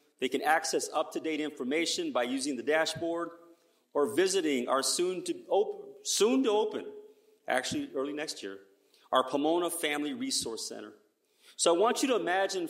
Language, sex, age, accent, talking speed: English, male, 40-59, American, 130 wpm